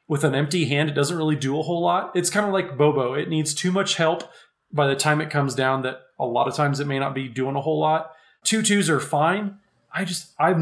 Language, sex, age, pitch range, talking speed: English, male, 30-49, 140-165 Hz, 265 wpm